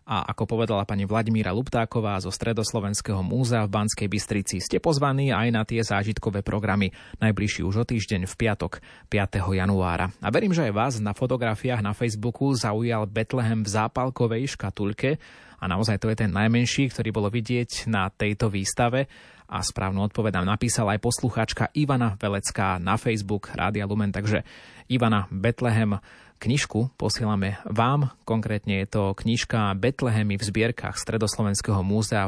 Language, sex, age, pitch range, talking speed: Slovak, male, 20-39, 100-120 Hz, 150 wpm